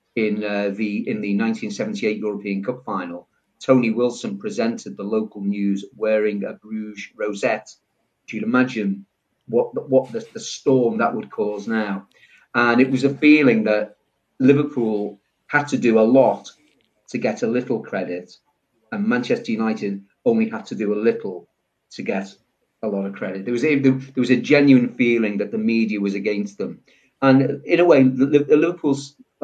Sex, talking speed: male, 175 wpm